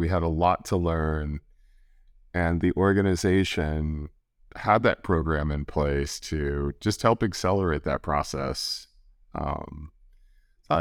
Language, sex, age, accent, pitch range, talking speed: English, male, 40-59, American, 75-95 Hz, 120 wpm